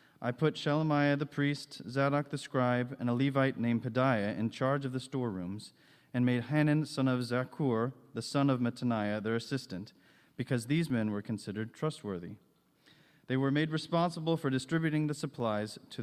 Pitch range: 115-145 Hz